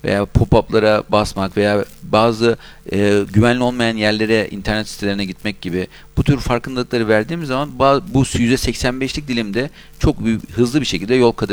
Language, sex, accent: Turkish, male, native